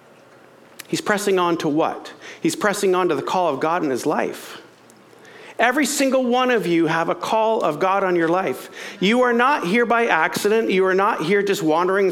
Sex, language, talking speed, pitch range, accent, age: male, English, 205 wpm, 175-240 Hz, American, 50-69